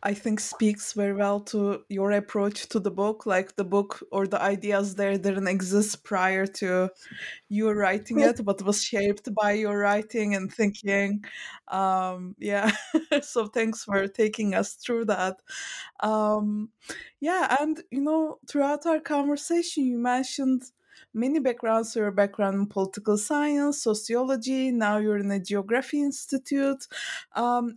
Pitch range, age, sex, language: 205-275 Hz, 20-39, female, English